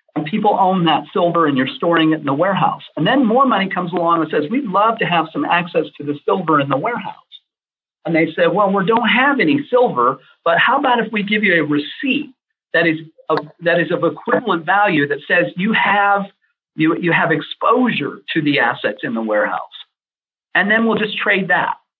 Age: 50-69